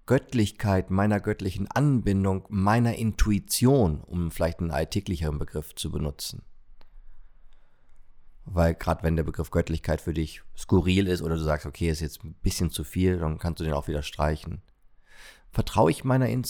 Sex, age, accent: male, 40-59, German